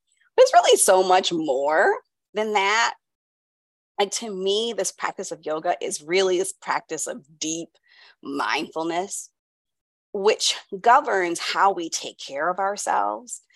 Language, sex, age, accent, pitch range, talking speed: English, female, 30-49, American, 170-285 Hz, 130 wpm